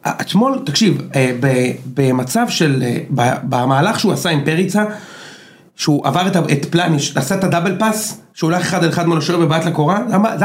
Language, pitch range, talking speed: Hebrew, 155-215 Hz, 170 wpm